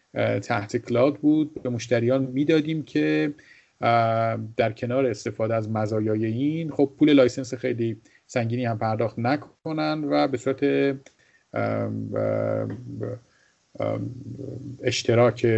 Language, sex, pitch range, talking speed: Persian, male, 110-140 Hz, 95 wpm